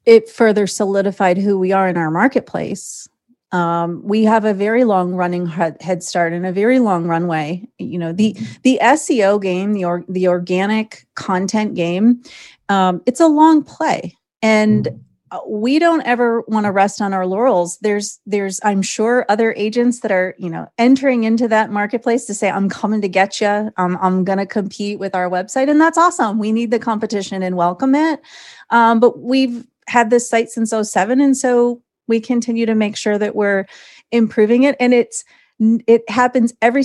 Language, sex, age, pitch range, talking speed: English, female, 30-49, 195-240 Hz, 180 wpm